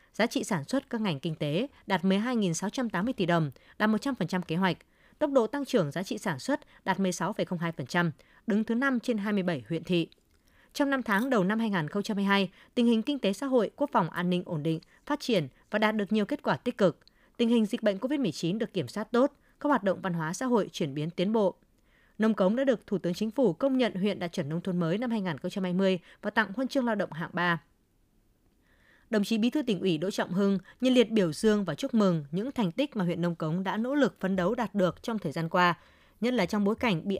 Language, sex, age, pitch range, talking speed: Vietnamese, female, 20-39, 175-235 Hz, 235 wpm